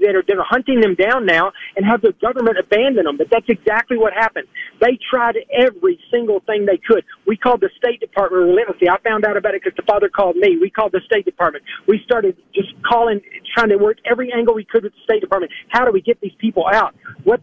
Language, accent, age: English, American, 40-59